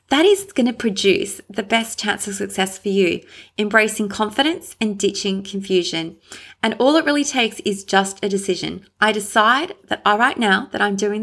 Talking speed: 180 wpm